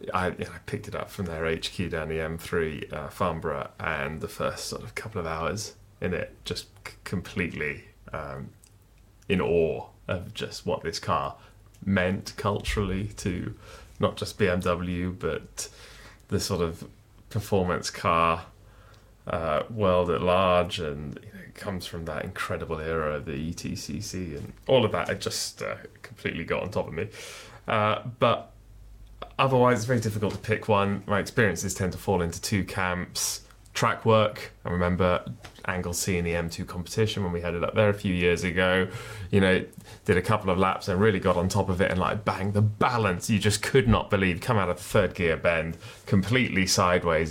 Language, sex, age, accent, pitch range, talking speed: English, male, 20-39, British, 90-105 Hz, 185 wpm